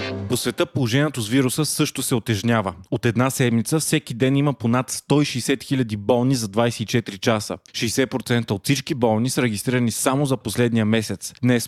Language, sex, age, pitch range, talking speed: Bulgarian, male, 30-49, 115-135 Hz, 165 wpm